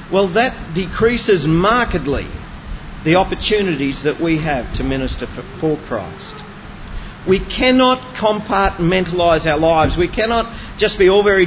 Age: 40-59